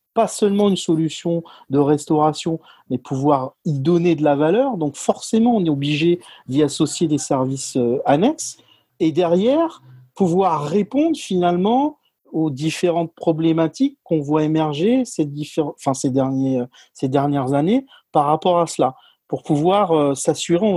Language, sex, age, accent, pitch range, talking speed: French, male, 40-59, French, 155-185 Hz, 145 wpm